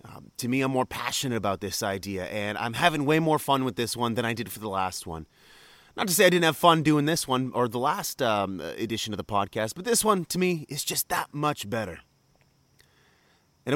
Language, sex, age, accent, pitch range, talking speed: English, male, 30-49, American, 115-160 Hz, 235 wpm